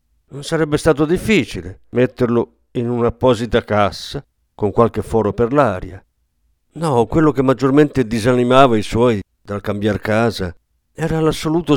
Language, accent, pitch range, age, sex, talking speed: Italian, native, 100-145 Hz, 50-69, male, 125 wpm